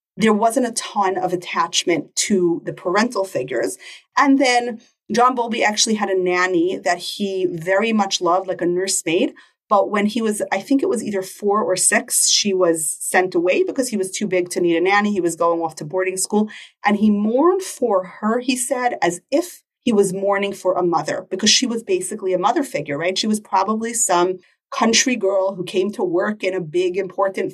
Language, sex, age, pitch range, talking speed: English, female, 30-49, 185-235 Hz, 205 wpm